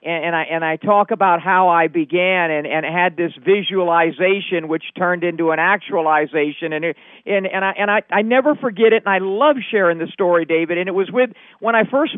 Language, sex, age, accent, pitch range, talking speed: English, male, 50-69, American, 170-220 Hz, 220 wpm